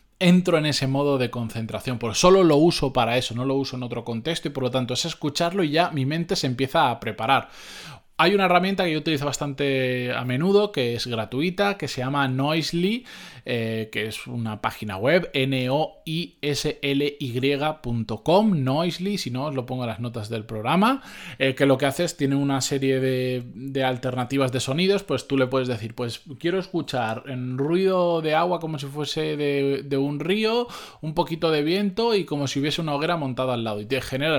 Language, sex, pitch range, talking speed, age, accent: Spanish, male, 125-170 Hz, 195 wpm, 20-39, Spanish